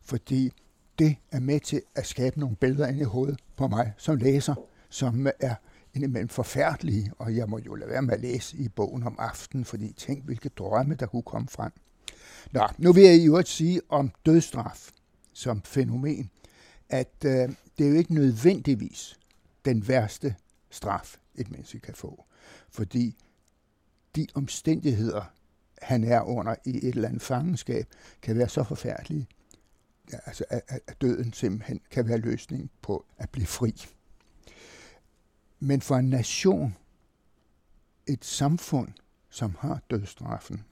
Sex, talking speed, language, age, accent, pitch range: male, 150 wpm, Danish, 60-79, native, 110-140 Hz